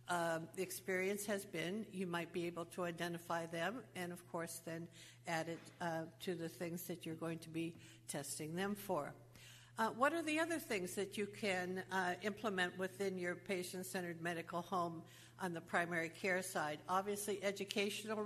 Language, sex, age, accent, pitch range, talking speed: English, female, 60-79, American, 170-195 Hz, 175 wpm